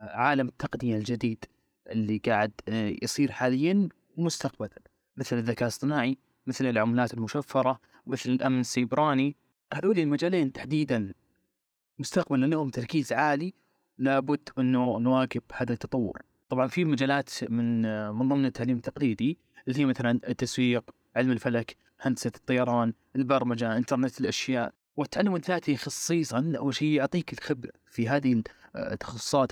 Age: 20-39